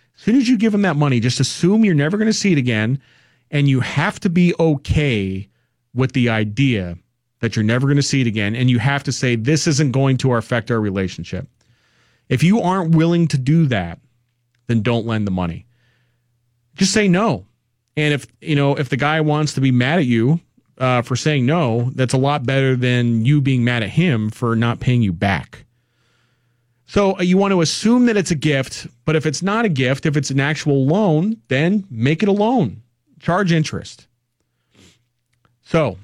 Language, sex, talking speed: English, male, 200 wpm